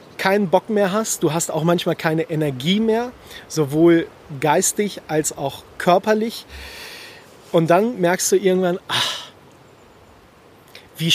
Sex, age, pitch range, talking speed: male, 40-59, 155-200 Hz, 125 wpm